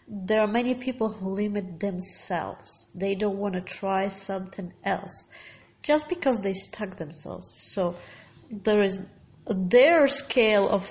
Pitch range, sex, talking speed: 185-215 Hz, female, 140 wpm